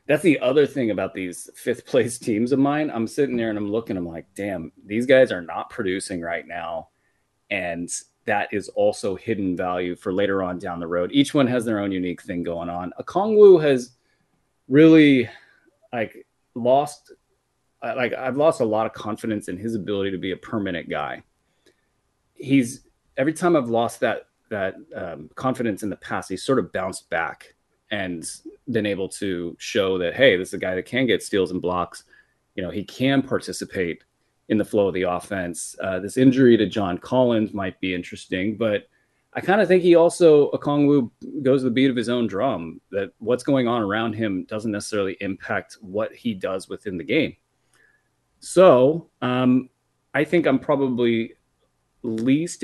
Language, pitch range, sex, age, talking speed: English, 95-135 Hz, male, 30-49, 180 wpm